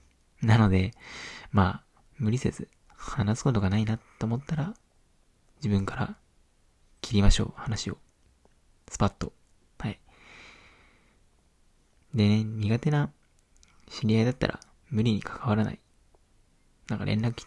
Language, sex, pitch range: Japanese, male, 75-115 Hz